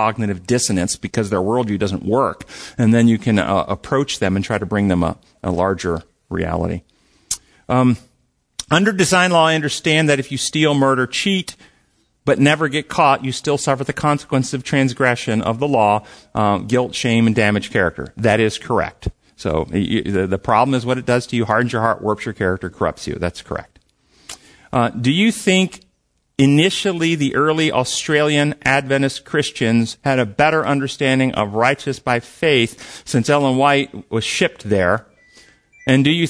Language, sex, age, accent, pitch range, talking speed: English, male, 40-59, American, 105-140 Hz, 175 wpm